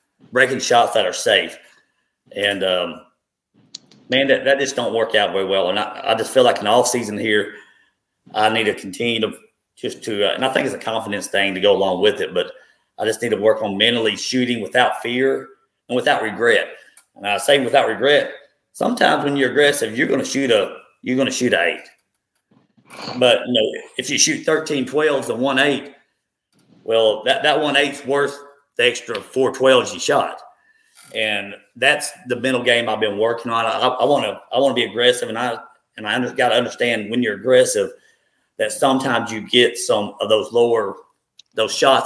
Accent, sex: American, male